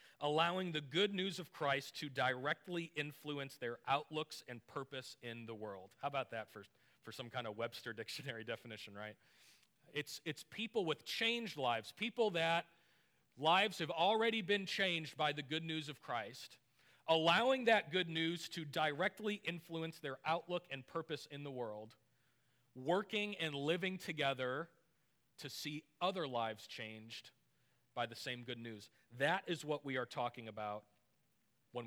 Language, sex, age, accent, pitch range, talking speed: English, male, 40-59, American, 125-170 Hz, 155 wpm